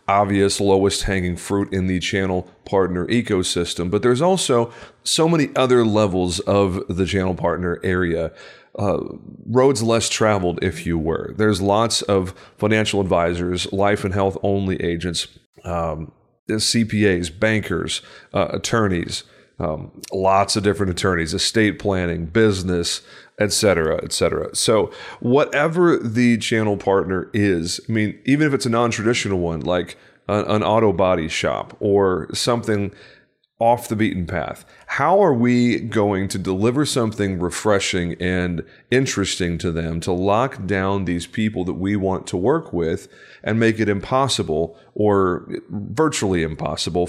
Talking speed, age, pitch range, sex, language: 140 wpm, 30-49, 90-110 Hz, male, English